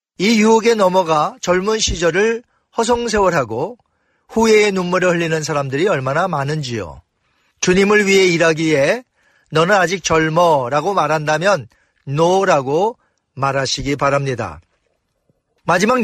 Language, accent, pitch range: Korean, native, 150-200 Hz